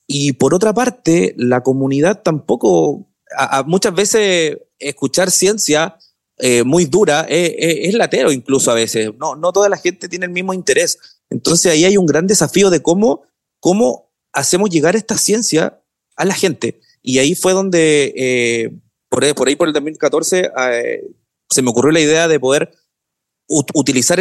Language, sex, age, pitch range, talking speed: Spanish, male, 30-49, 130-175 Hz, 160 wpm